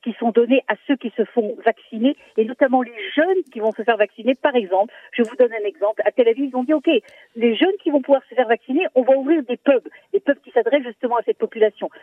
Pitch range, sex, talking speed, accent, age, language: 230-290 Hz, female, 270 wpm, French, 50-69, Russian